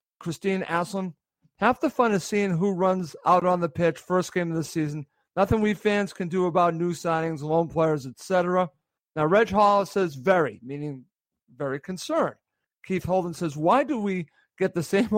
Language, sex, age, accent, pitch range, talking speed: English, male, 50-69, American, 165-195 Hz, 185 wpm